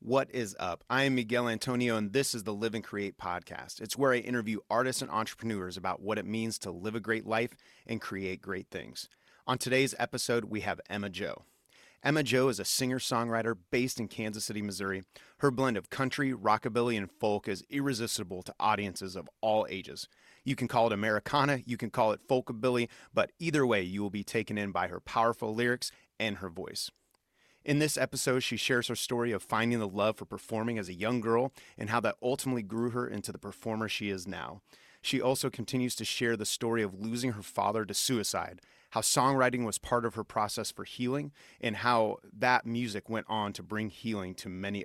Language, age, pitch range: English, 30-49, 105-125 Hz